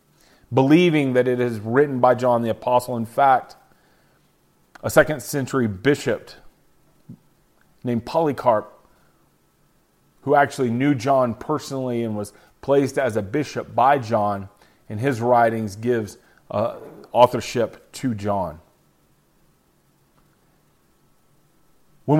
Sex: male